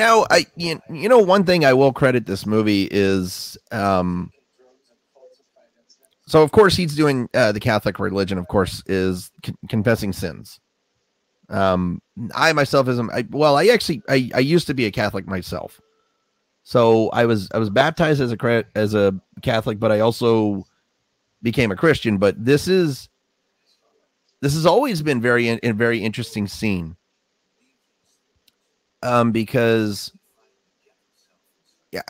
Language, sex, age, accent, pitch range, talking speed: English, male, 30-49, American, 105-130 Hz, 145 wpm